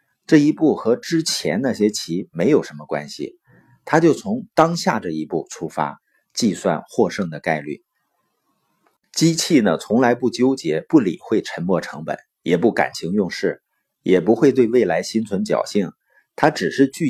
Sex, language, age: male, Chinese, 50-69